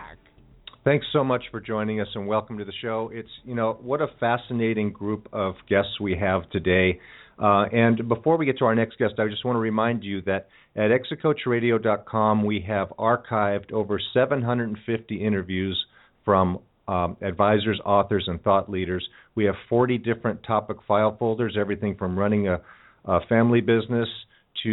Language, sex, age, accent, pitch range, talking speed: English, male, 50-69, American, 100-120 Hz, 165 wpm